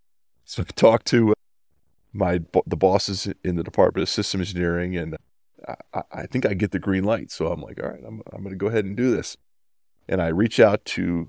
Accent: American